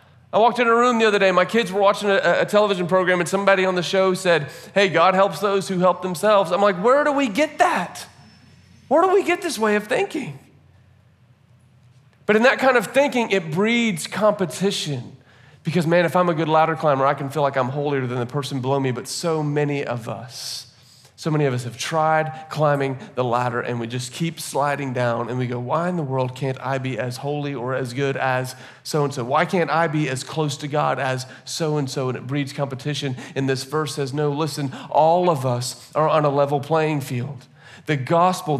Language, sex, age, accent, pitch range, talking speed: English, male, 40-59, American, 135-180 Hz, 220 wpm